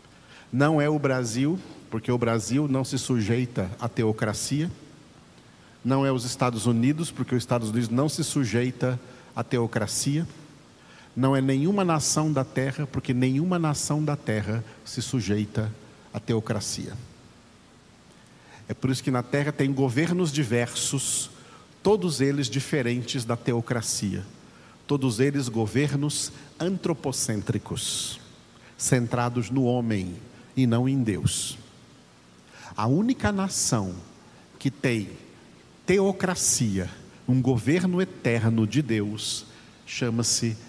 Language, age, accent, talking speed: Portuguese, 50-69, Brazilian, 115 wpm